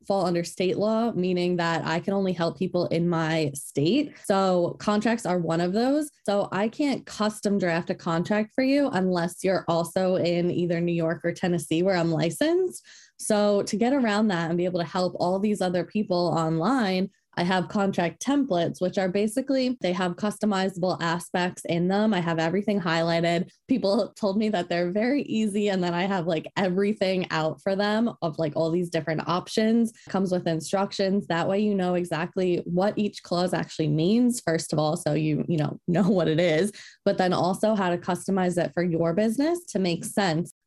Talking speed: 195 wpm